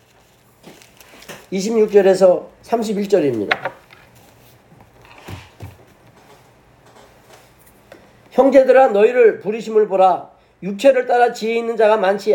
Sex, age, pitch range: male, 40-59, 210-265 Hz